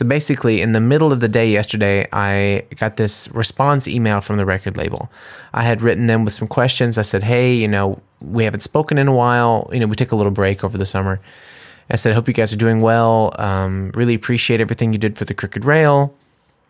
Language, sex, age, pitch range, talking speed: English, male, 20-39, 100-125 Hz, 235 wpm